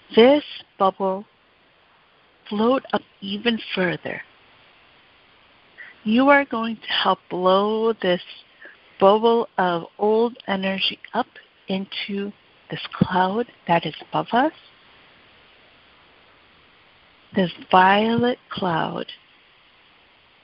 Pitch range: 190-235 Hz